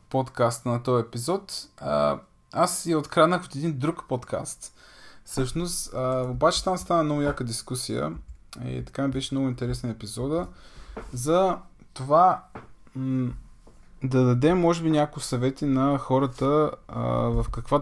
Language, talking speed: Bulgarian, 125 wpm